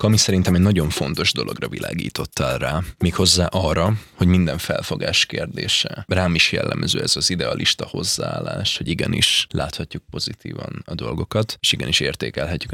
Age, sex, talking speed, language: 20-39, male, 140 wpm, Hungarian